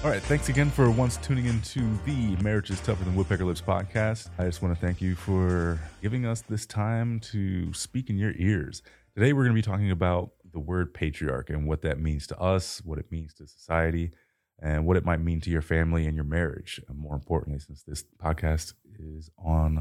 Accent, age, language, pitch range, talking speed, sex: American, 30-49, English, 80-95 Hz, 220 wpm, male